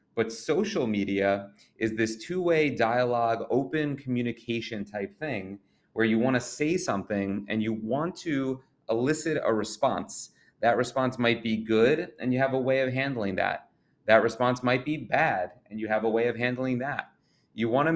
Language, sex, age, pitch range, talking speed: English, male, 30-49, 110-140 Hz, 170 wpm